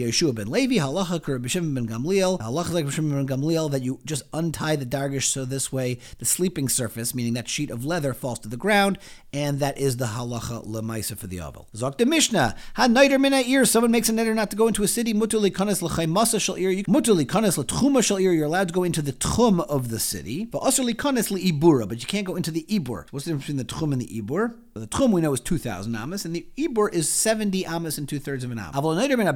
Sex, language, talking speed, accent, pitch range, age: male, English, 250 wpm, American, 125-185 Hz, 40-59